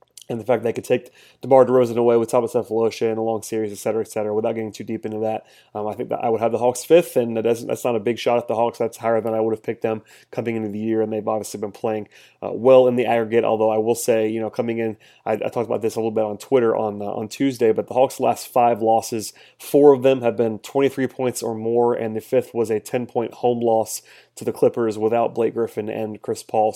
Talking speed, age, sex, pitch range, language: 275 wpm, 30-49, male, 110-125 Hz, English